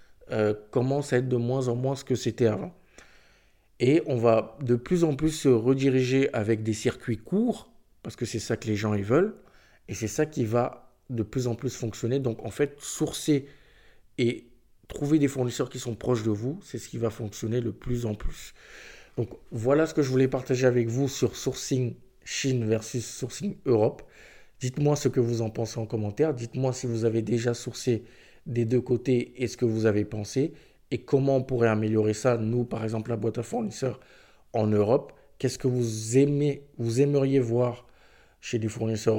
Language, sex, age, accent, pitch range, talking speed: French, male, 50-69, French, 110-130 Hz, 200 wpm